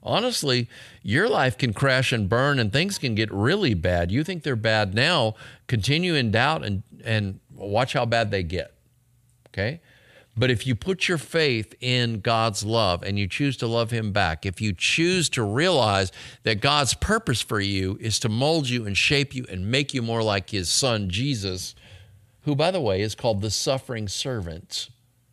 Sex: male